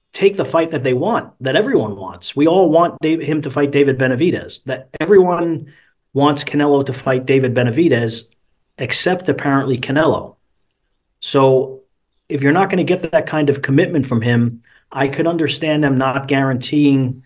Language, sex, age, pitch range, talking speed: English, male, 30-49, 120-150 Hz, 170 wpm